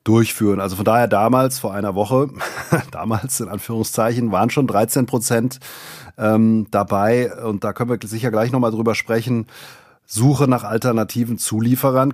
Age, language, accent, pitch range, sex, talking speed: 30-49, German, German, 100-120 Hz, male, 150 wpm